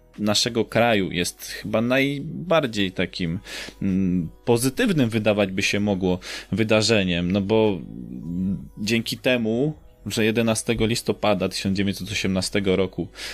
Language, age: Polish, 20-39